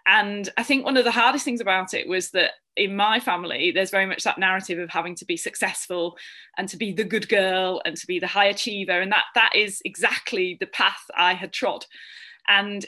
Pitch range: 185-235 Hz